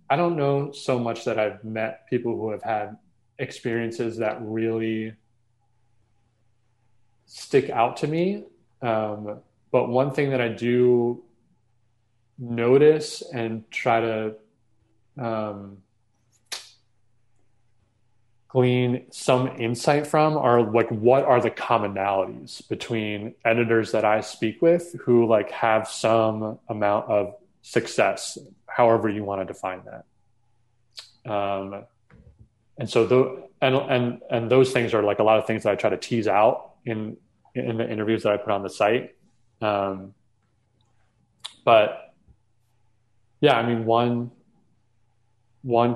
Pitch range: 110-120 Hz